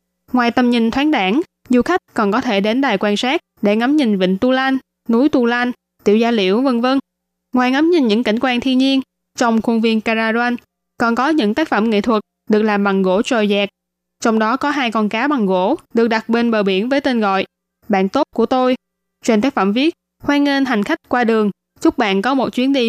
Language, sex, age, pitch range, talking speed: Vietnamese, female, 10-29, 200-260 Hz, 235 wpm